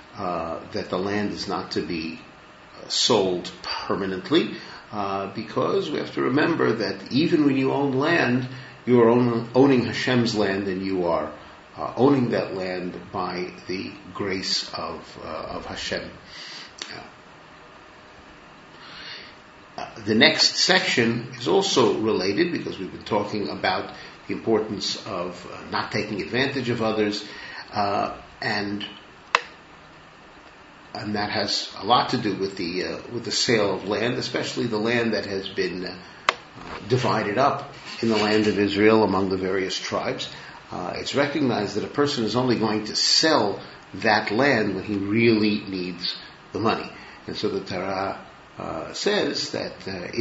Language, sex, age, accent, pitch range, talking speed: English, male, 50-69, American, 95-120 Hz, 145 wpm